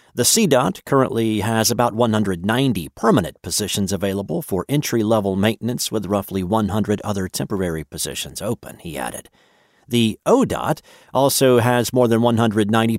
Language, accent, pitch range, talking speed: English, American, 100-130 Hz, 130 wpm